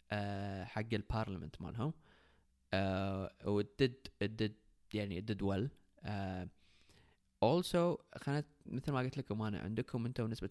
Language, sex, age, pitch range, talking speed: Arabic, male, 20-39, 100-120 Hz, 110 wpm